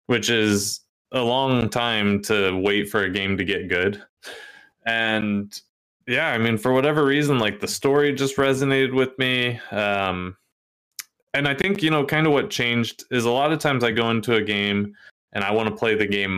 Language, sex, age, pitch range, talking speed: English, male, 20-39, 100-125 Hz, 200 wpm